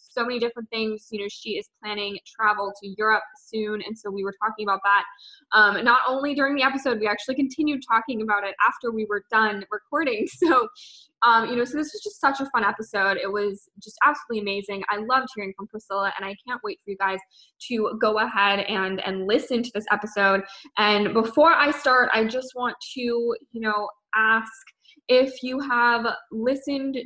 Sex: female